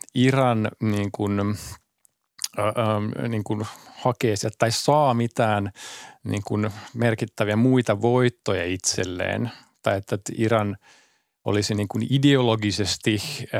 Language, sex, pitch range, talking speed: Finnish, male, 105-120 Hz, 95 wpm